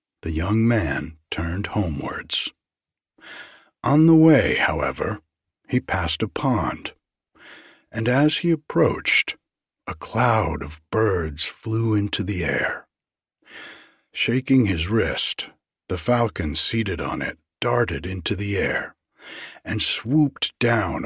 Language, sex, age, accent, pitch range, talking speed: English, male, 60-79, American, 90-120 Hz, 115 wpm